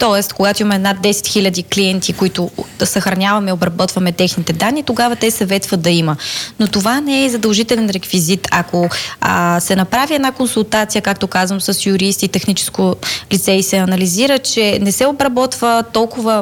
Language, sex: Bulgarian, female